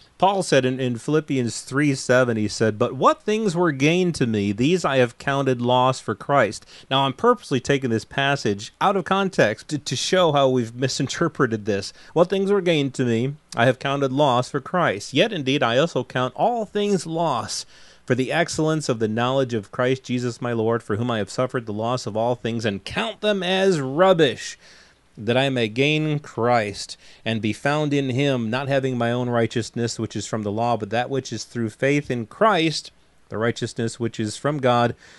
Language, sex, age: English, male, 30-49